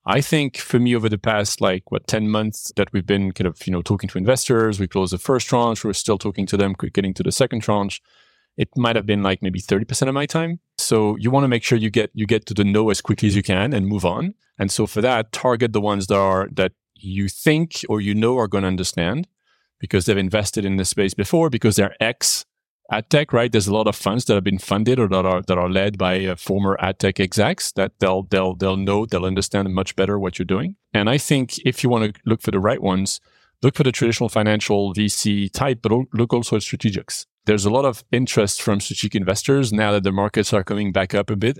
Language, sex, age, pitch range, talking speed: English, male, 30-49, 95-120 Hz, 250 wpm